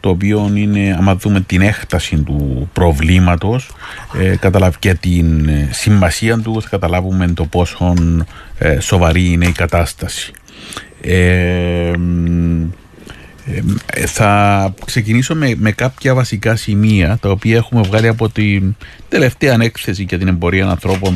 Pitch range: 90-110 Hz